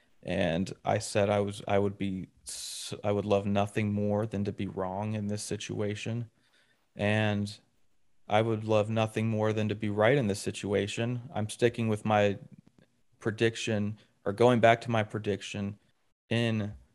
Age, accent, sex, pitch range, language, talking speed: 30-49, American, male, 105-120 Hz, English, 160 wpm